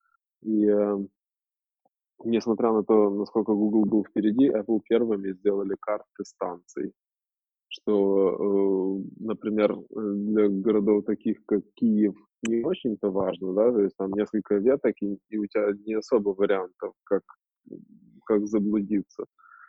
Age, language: 20-39, Russian